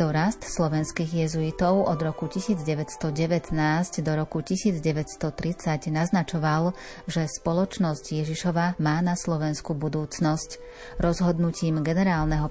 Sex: female